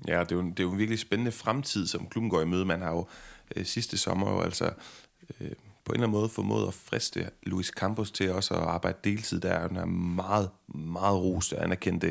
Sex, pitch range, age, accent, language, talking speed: male, 95-110 Hz, 30-49, native, Danish, 245 wpm